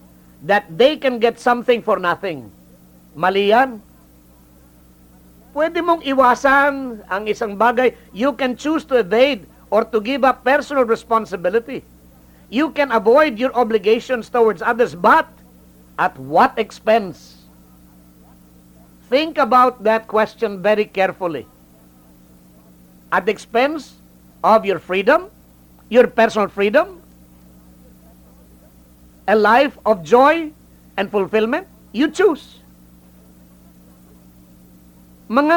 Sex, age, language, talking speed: male, 50-69, English, 100 wpm